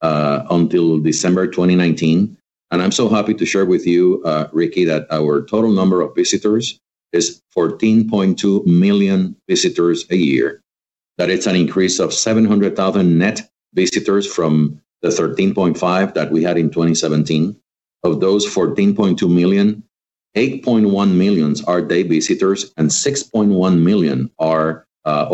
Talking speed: 135 wpm